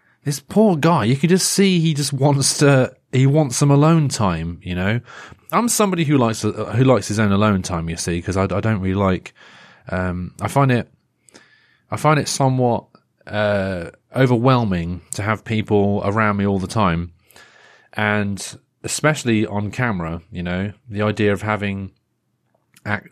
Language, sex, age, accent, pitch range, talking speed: English, male, 30-49, British, 105-155 Hz, 170 wpm